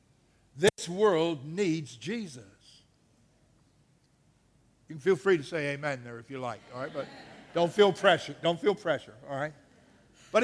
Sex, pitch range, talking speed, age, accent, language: male, 130-200 Hz, 155 wpm, 60-79, American, English